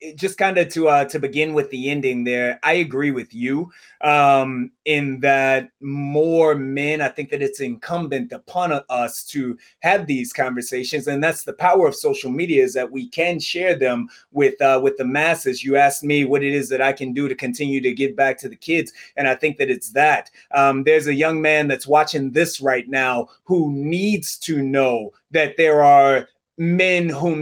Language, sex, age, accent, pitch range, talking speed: English, male, 20-39, American, 140-175 Hz, 205 wpm